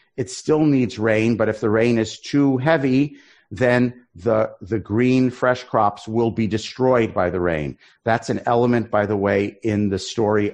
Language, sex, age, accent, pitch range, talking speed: English, male, 50-69, American, 105-120 Hz, 180 wpm